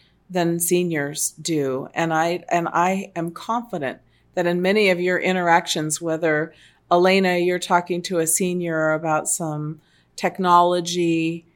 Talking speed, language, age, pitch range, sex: 130 wpm, English, 40-59, 155-180 Hz, female